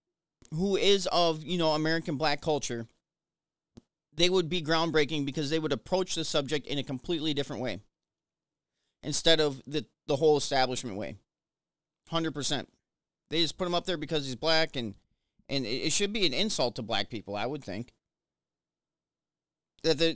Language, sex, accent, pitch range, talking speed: English, male, American, 130-165 Hz, 165 wpm